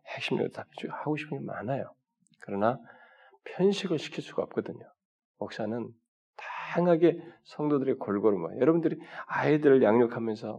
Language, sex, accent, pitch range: Korean, male, native, 115-165 Hz